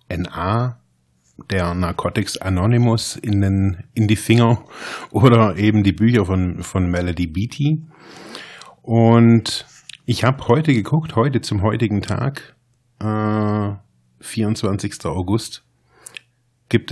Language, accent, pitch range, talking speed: German, German, 95-120 Hz, 105 wpm